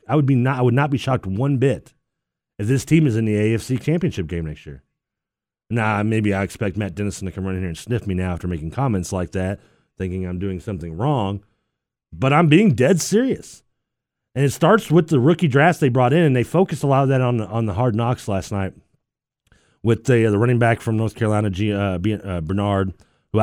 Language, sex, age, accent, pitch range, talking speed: English, male, 30-49, American, 95-130 Hz, 230 wpm